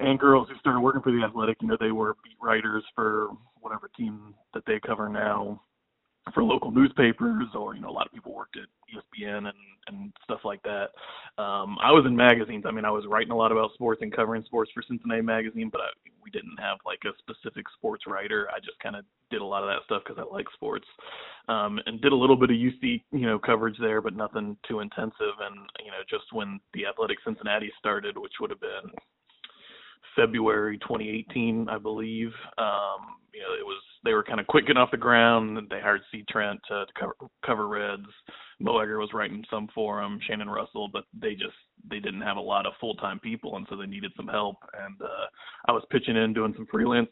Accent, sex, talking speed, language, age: American, male, 220 wpm, English, 20-39